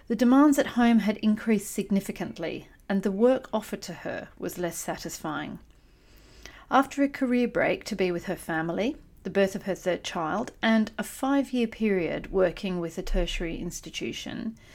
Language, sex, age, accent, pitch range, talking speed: English, female, 40-59, Australian, 180-230 Hz, 165 wpm